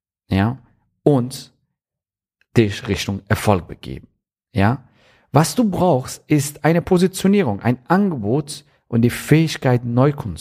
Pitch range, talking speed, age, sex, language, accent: 100-130 Hz, 110 wpm, 40-59, male, German, German